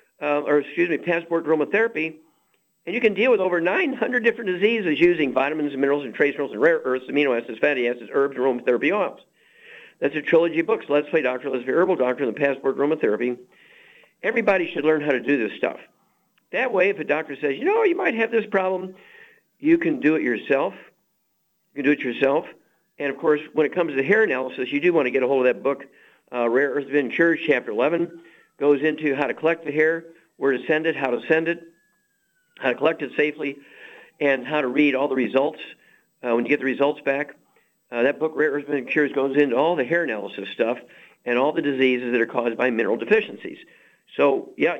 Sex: male